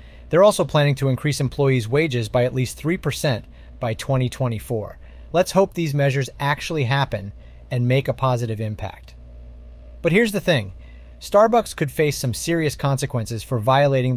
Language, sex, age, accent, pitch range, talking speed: English, male, 30-49, American, 110-150 Hz, 150 wpm